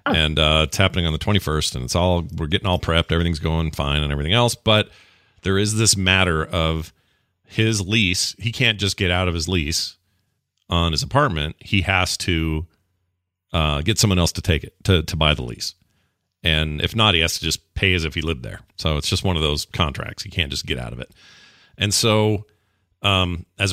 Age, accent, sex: 40-59, American, male